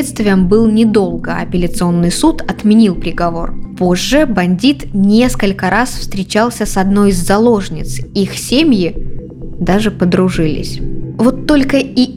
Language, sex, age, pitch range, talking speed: Russian, female, 20-39, 175-230 Hz, 110 wpm